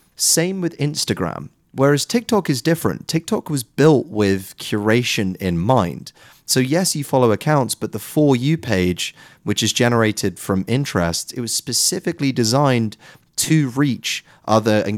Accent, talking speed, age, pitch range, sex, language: British, 150 wpm, 30-49, 95-135 Hz, male, English